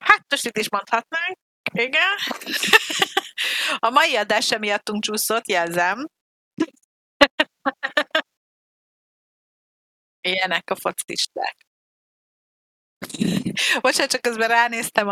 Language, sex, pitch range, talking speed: Hungarian, female, 190-240 Hz, 75 wpm